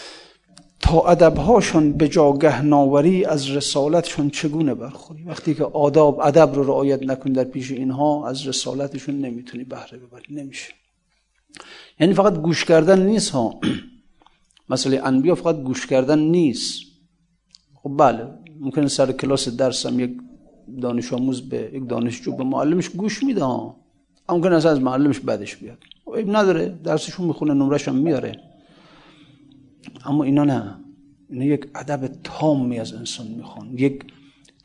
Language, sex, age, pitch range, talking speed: Persian, male, 50-69, 135-165 Hz, 135 wpm